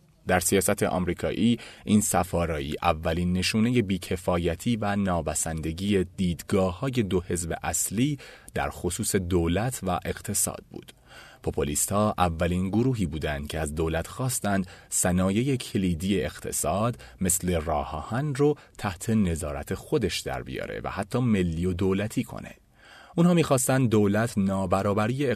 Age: 30-49